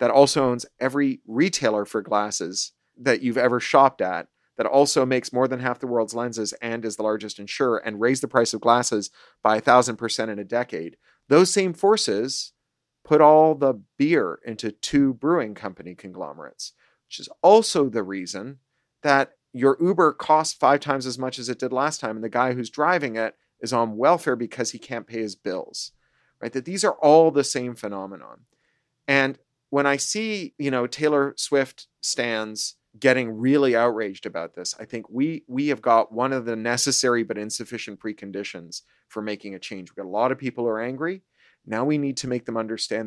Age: 40-59